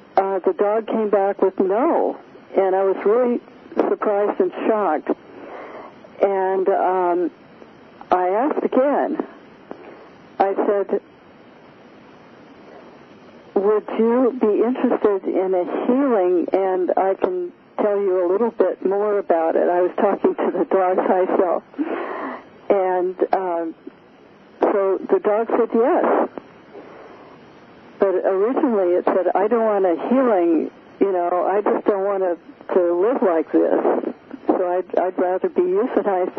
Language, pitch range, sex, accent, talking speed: English, 185-230 Hz, female, American, 130 wpm